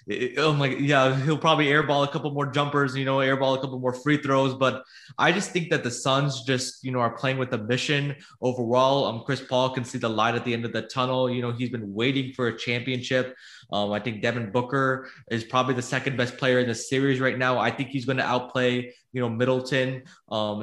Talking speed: 235 wpm